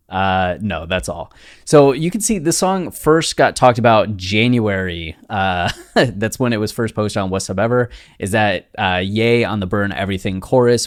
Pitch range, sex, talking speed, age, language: 90-115 Hz, male, 195 wpm, 20-39, English